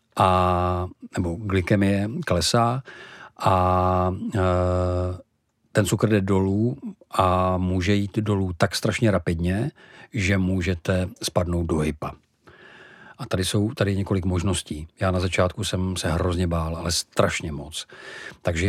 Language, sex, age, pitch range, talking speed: Czech, male, 50-69, 90-105 Hz, 125 wpm